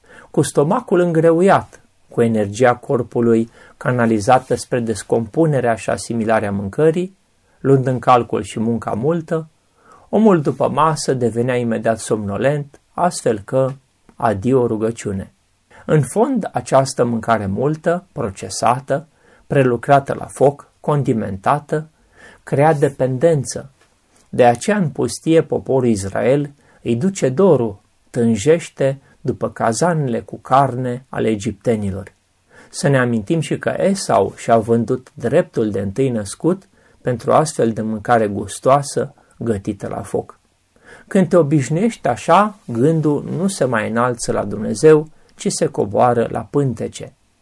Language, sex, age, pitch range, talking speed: Romanian, male, 30-49, 115-160 Hz, 120 wpm